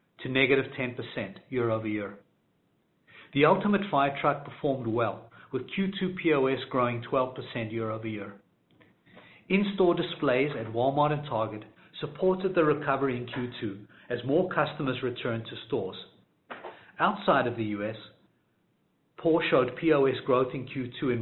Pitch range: 120-150 Hz